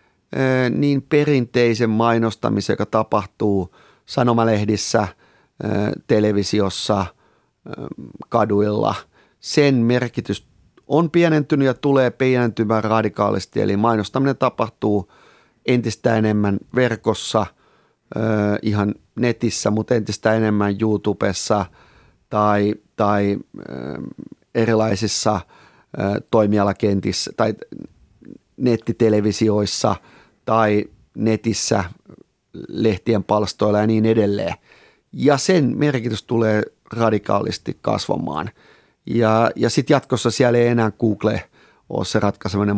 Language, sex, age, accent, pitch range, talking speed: Finnish, male, 30-49, native, 105-125 Hz, 80 wpm